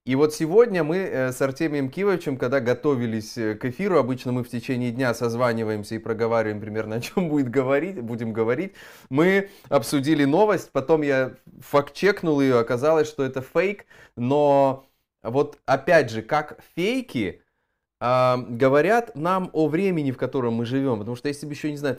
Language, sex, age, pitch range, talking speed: Russian, male, 20-39, 125-160 Hz, 160 wpm